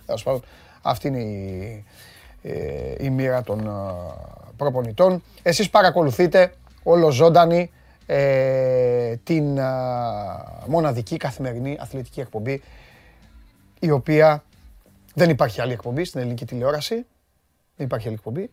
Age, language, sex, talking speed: 30-49, Greek, male, 90 wpm